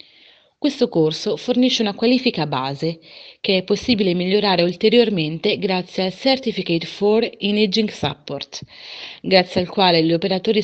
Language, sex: Italian, female